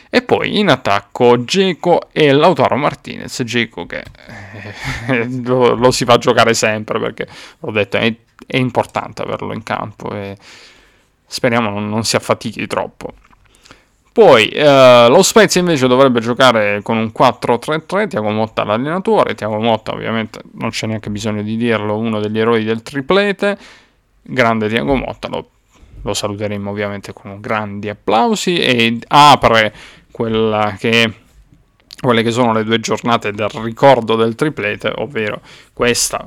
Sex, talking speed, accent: male, 140 wpm, native